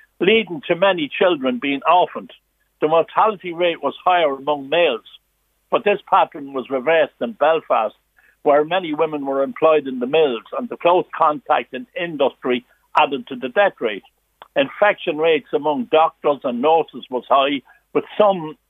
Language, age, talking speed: English, 60-79, 155 wpm